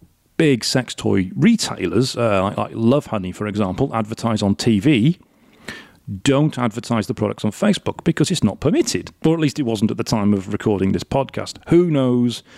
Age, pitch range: 40-59, 105-135 Hz